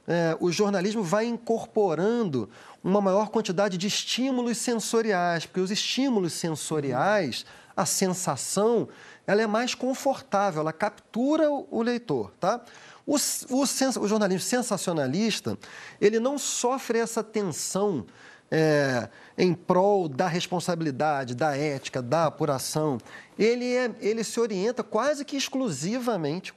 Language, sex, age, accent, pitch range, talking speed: Portuguese, male, 40-59, Brazilian, 160-245 Hz, 110 wpm